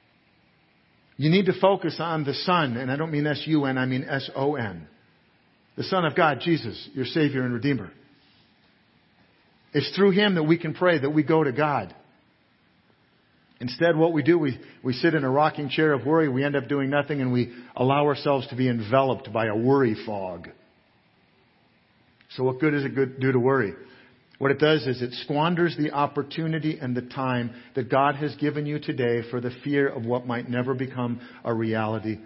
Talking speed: 185 wpm